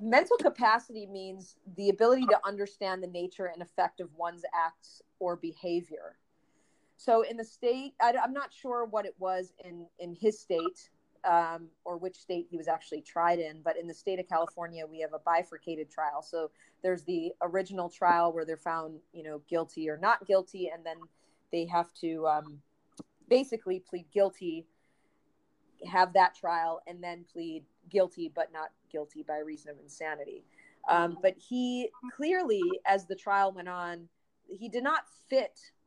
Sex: female